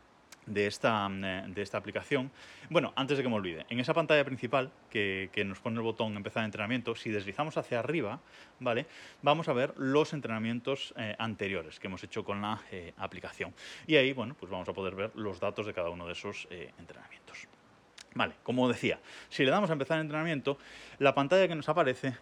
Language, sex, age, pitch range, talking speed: Spanish, male, 20-39, 105-150 Hz, 205 wpm